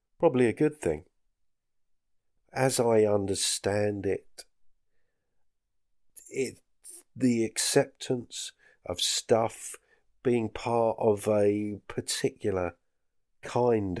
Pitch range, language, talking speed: 95-125 Hz, English, 80 wpm